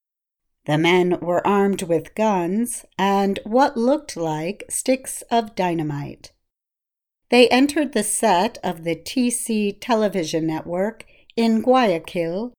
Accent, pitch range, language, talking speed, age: American, 160-220 Hz, English, 115 wpm, 50-69